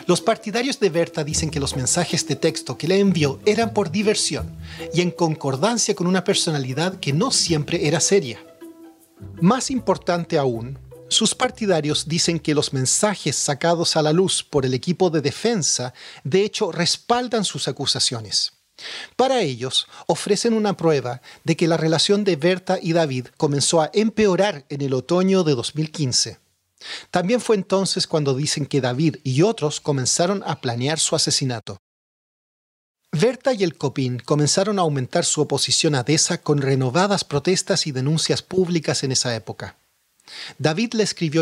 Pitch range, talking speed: 140-190 Hz, 155 wpm